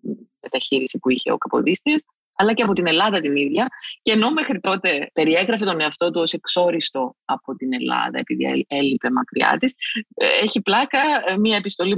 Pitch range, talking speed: 155-230 Hz, 165 wpm